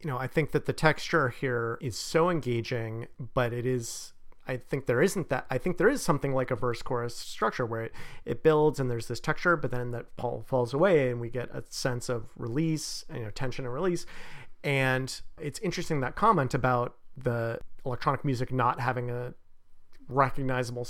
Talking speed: 190 wpm